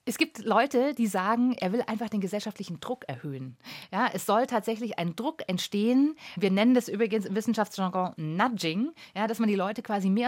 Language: German